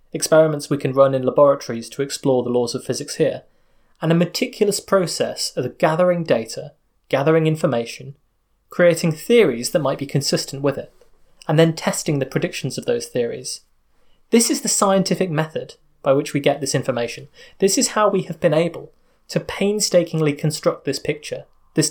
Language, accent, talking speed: English, British, 170 wpm